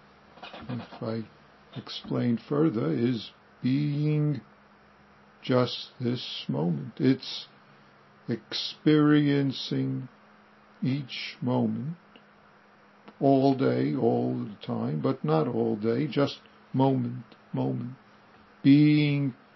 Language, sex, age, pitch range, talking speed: English, male, 60-79, 115-140 Hz, 80 wpm